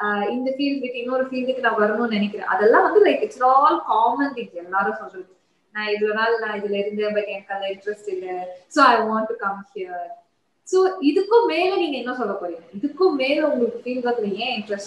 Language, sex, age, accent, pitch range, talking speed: Tamil, female, 20-39, native, 210-275 Hz, 95 wpm